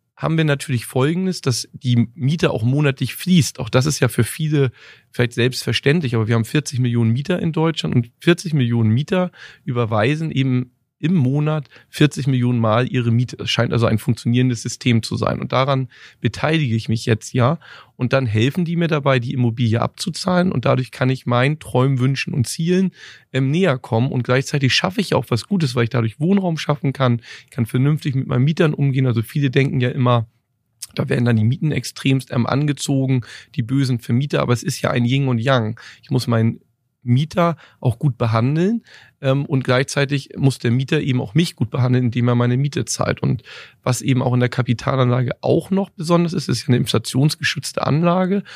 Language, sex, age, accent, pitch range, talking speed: German, male, 30-49, German, 120-150 Hz, 195 wpm